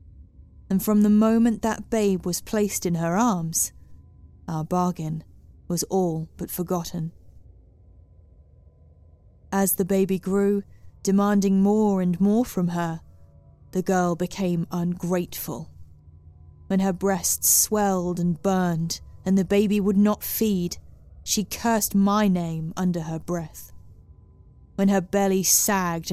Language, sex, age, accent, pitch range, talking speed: English, female, 20-39, British, 125-200 Hz, 125 wpm